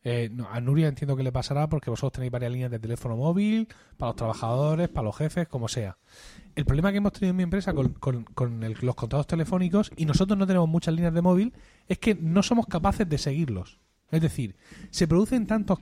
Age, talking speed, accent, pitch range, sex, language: 30-49, 225 wpm, Spanish, 130-185 Hz, male, Spanish